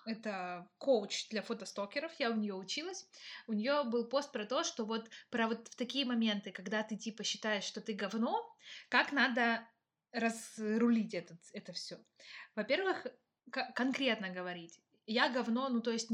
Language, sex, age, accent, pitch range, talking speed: Russian, female, 20-39, native, 195-250 Hz, 155 wpm